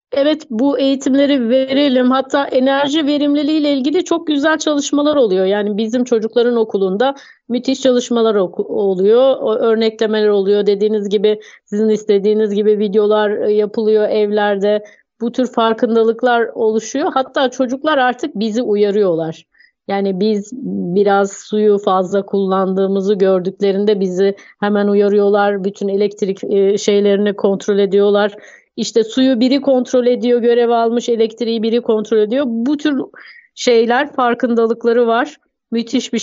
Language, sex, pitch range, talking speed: Turkish, female, 210-265 Hz, 120 wpm